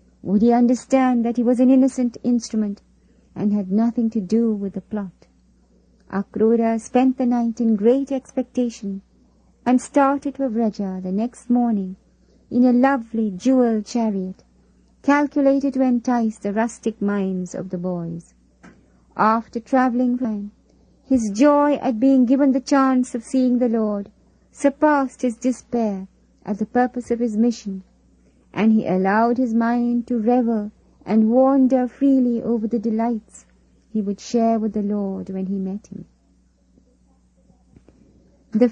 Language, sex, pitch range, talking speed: English, female, 210-255 Hz, 140 wpm